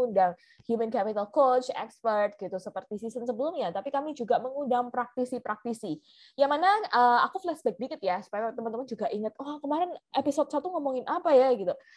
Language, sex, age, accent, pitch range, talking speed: Indonesian, female, 20-39, native, 215-290 Hz, 165 wpm